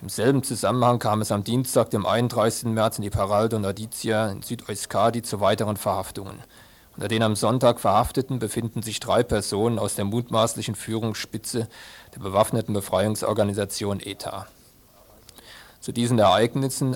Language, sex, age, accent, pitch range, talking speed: German, male, 40-59, German, 105-125 Hz, 140 wpm